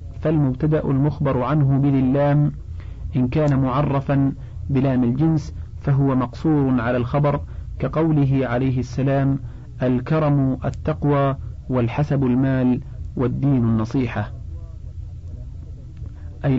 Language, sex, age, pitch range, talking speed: Arabic, male, 40-59, 120-150 Hz, 85 wpm